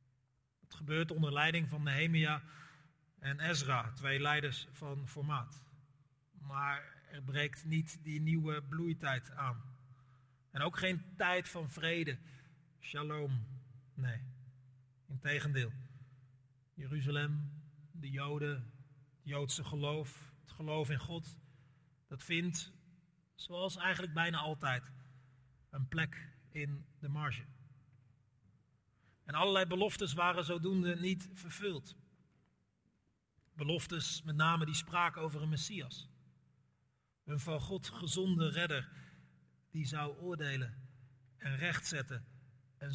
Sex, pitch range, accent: male, 130-165 Hz, Dutch